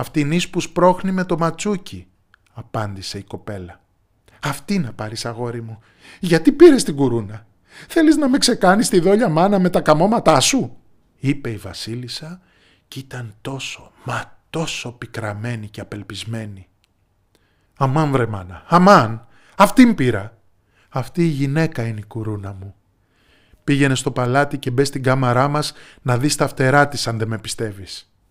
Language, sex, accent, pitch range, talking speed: Greek, male, native, 105-150 Hz, 150 wpm